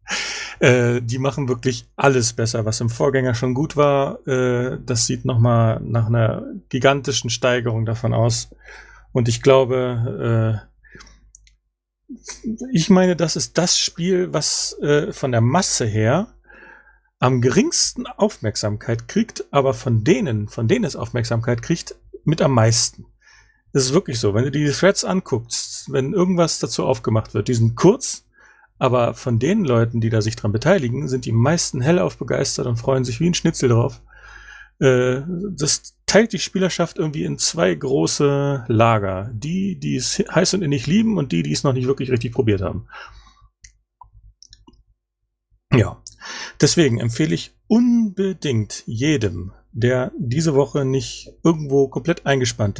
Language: German